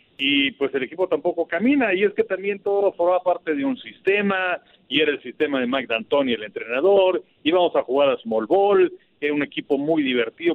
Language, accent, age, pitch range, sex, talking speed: Spanish, Mexican, 50-69, 135-195 Hz, male, 205 wpm